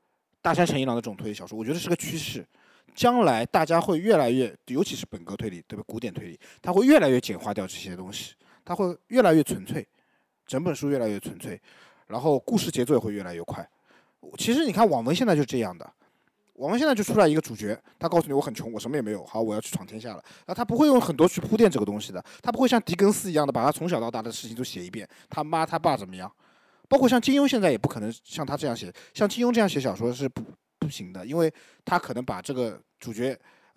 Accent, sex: native, male